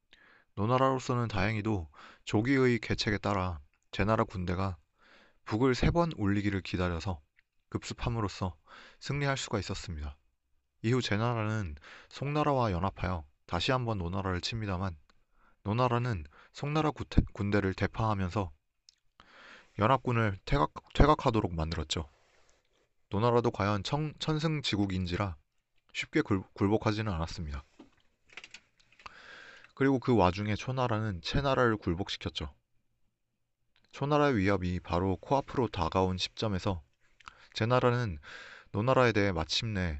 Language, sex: Korean, male